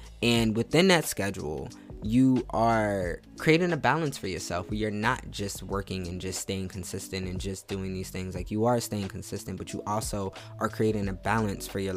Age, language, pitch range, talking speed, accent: 20-39, English, 95-115 Hz, 195 wpm, American